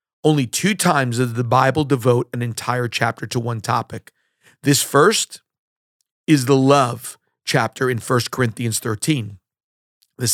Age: 40-59